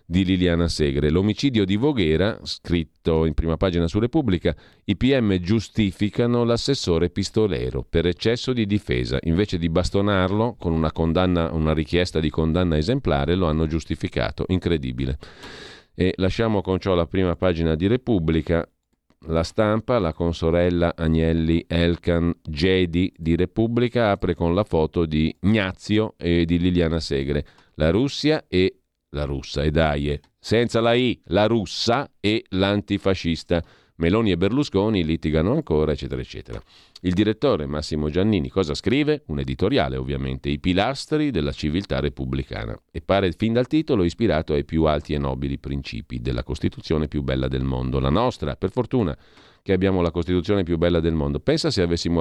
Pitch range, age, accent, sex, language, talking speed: 75-100 Hz, 40-59, native, male, Italian, 150 wpm